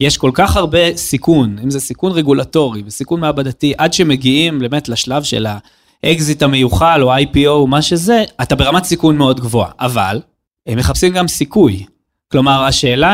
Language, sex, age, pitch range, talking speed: Hebrew, male, 20-39, 130-170 Hz, 155 wpm